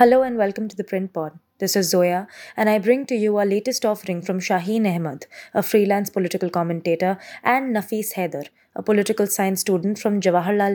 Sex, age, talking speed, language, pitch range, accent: female, 20-39, 190 wpm, English, 180-215 Hz, Indian